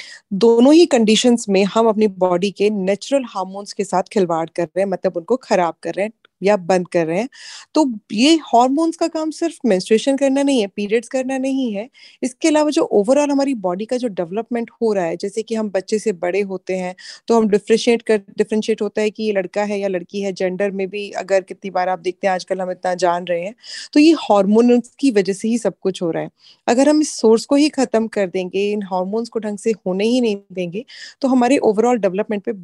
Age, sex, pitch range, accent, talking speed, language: 20-39, female, 195-260 Hz, Indian, 155 wpm, English